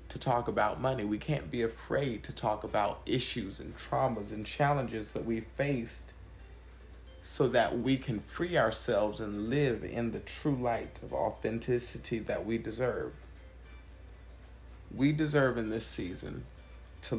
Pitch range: 80-115 Hz